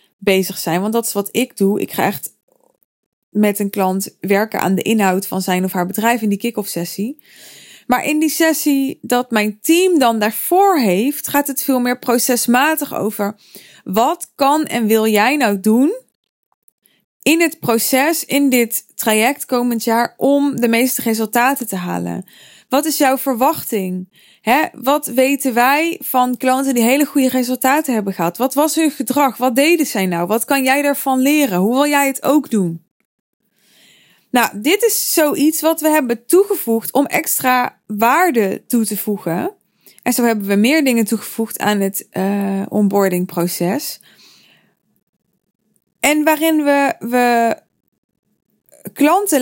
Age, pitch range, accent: 20-39, 210-280 Hz, Dutch